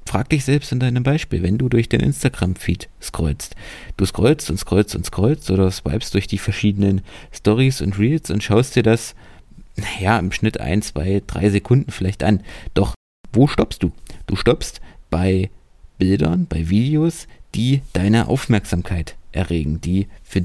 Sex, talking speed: male, 160 wpm